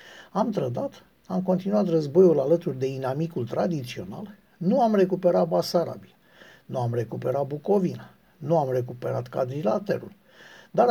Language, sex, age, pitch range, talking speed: Romanian, male, 60-79, 165-210 Hz, 120 wpm